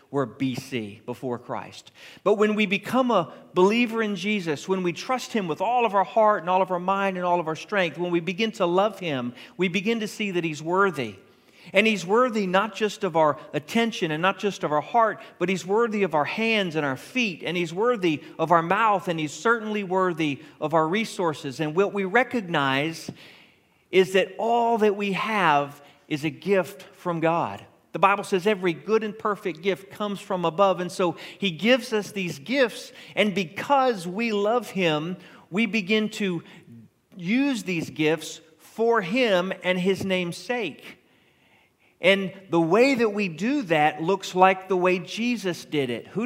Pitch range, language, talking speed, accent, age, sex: 165-210 Hz, English, 190 wpm, American, 40-59, male